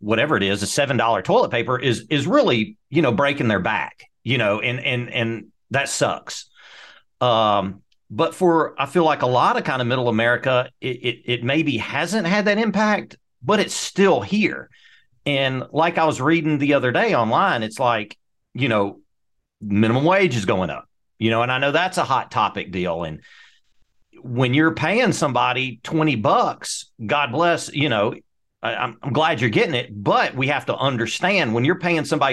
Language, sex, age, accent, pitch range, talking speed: English, male, 40-59, American, 115-150 Hz, 185 wpm